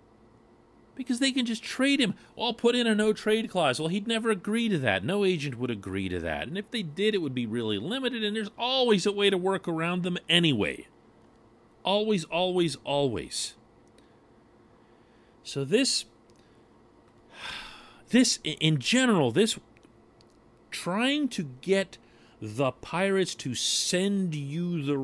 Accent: American